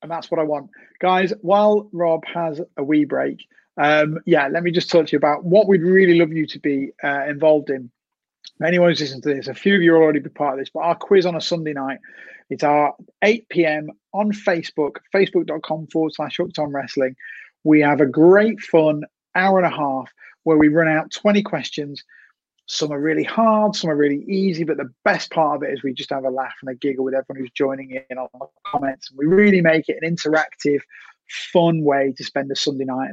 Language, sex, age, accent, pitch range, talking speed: English, male, 30-49, British, 145-180 Hz, 220 wpm